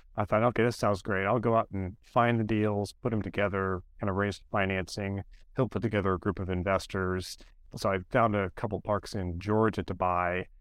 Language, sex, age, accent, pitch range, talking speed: English, male, 30-49, American, 95-115 Hz, 215 wpm